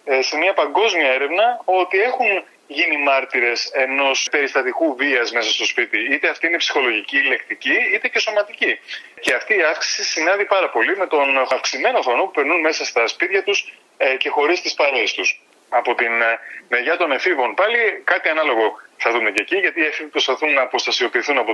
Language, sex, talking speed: Greek, male, 180 wpm